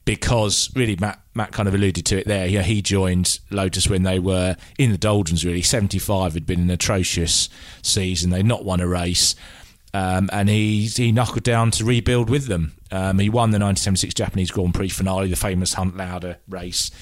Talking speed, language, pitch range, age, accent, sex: 195 wpm, English, 90-105 Hz, 30-49, British, male